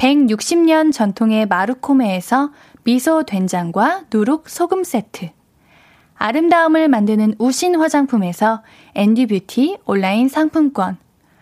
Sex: female